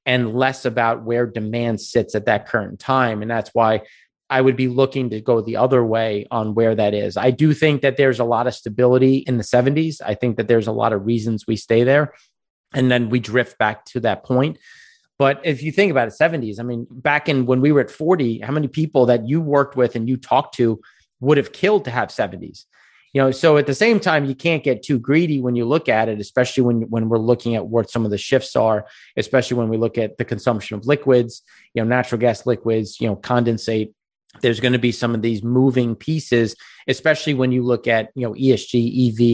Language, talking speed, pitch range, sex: English, 235 wpm, 115-135 Hz, male